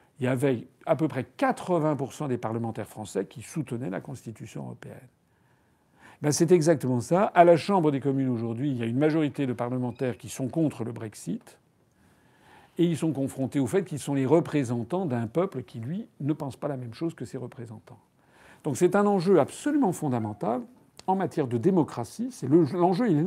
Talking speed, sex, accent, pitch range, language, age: 195 wpm, male, French, 120-160 Hz, French, 50-69